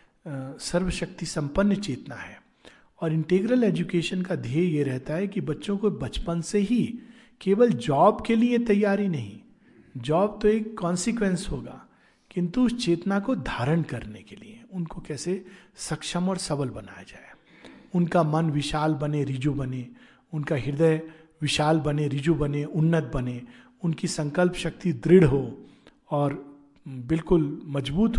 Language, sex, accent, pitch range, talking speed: Hindi, male, native, 140-180 Hz, 140 wpm